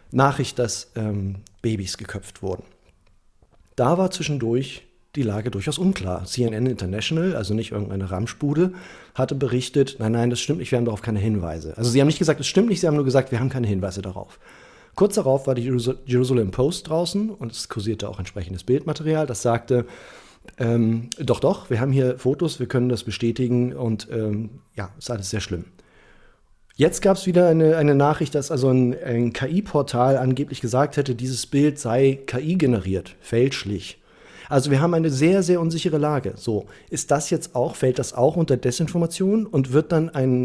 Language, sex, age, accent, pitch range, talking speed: German, male, 40-59, German, 115-150 Hz, 180 wpm